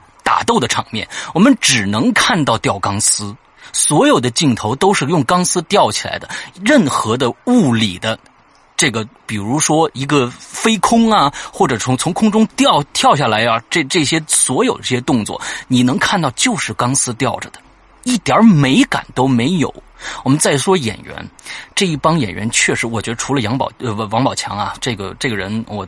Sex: male